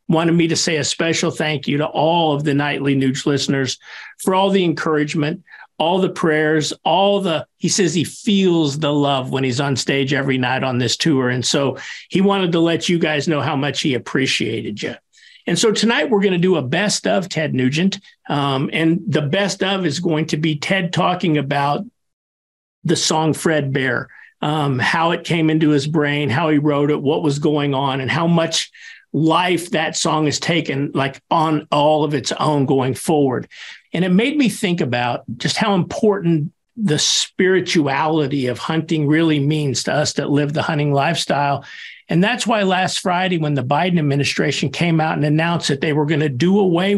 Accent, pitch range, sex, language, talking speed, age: American, 145-180 Hz, male, English, 195 wpm, 50-69